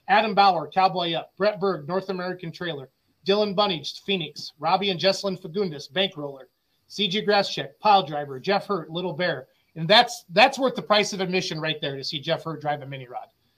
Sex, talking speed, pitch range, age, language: male, 190 wpm, 155-195 Hz, 30-49, English